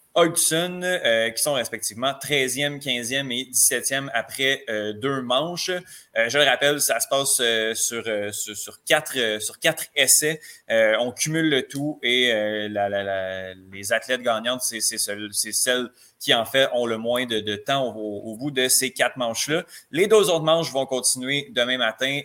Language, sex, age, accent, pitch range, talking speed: French, male, 20-39, Canadian, 115-145 Hz, 185 wpm